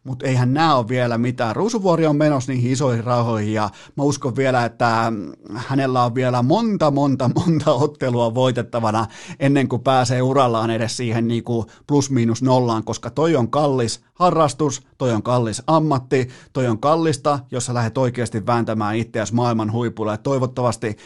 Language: Finnish